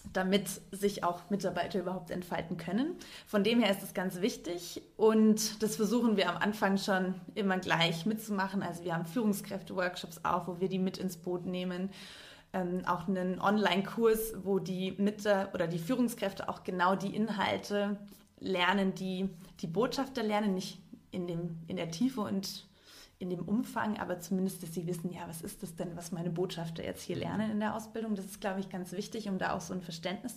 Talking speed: 190 wpm